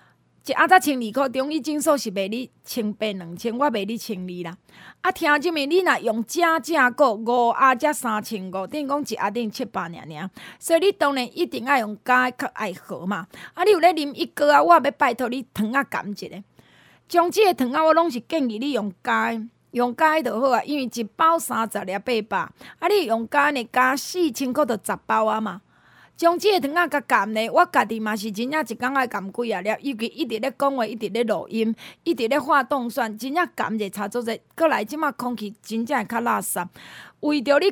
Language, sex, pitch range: Chinese, female, 220-295 Hz